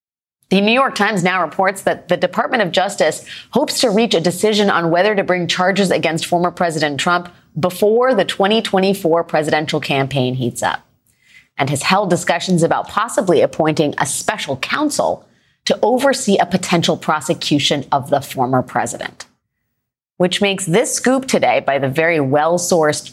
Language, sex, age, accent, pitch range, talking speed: English, female, 30-49, American, 155-200 Hz, 160 wpm